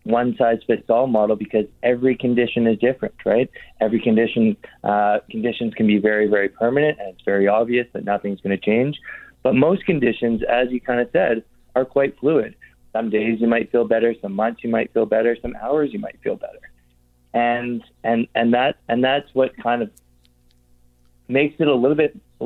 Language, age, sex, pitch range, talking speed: English, 20-39, male, 105-120 Hz, 195 wpm